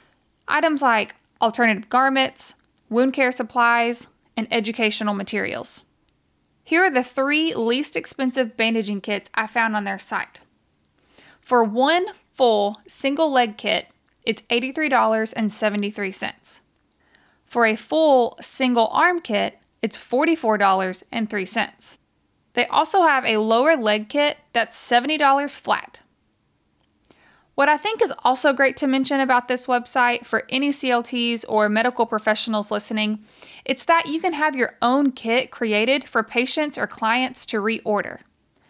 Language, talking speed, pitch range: English, 125 wpm, 220-265 Hz